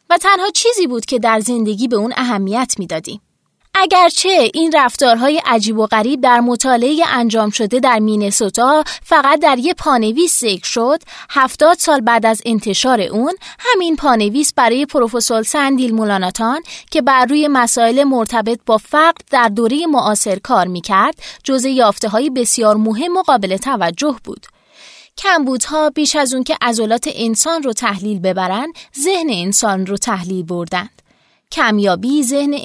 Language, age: Persian, 20-39